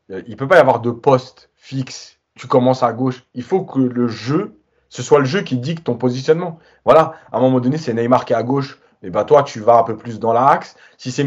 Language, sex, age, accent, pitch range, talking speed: French, male, 30-49, French, 125-195 Hz, 270 wpm